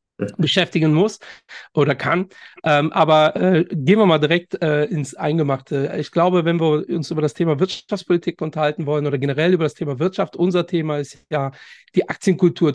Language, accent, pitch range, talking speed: German, German, 150-180 Hz, 175 wpm